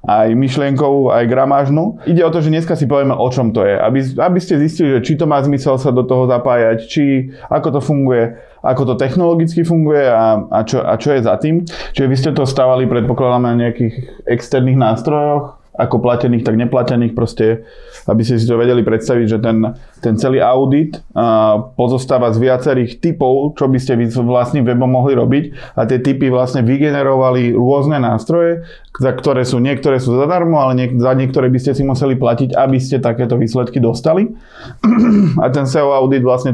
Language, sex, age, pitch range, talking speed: Slovak, male, 20-39, 120-140 Hz, 185 wpm